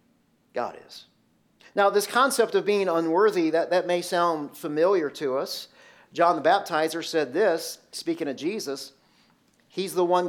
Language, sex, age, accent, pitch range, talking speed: English, male, 40-59, American, 175-225 Hz, 150 wpm